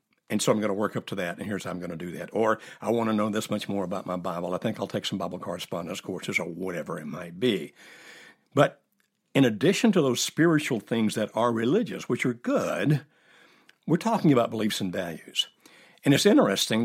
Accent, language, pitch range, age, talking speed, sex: American, English, 100-150 Hz, 60-79, 225 wpm, male